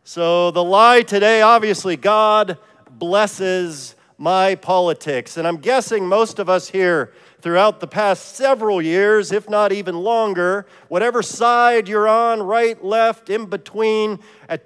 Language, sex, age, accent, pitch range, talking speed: English, male, 40-59, American, 155-215 Hz, 140 wpm